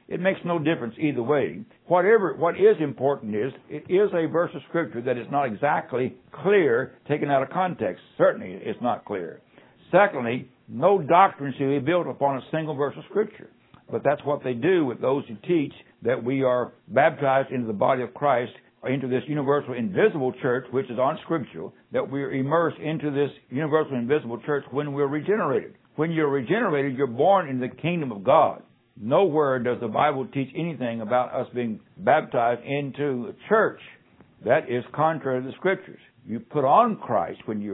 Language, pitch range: English, 125-155 Hz